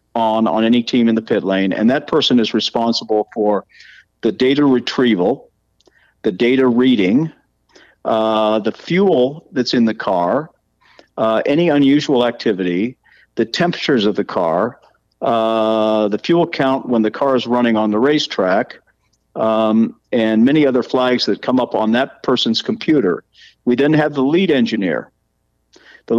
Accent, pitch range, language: American, 110-130 Hz, English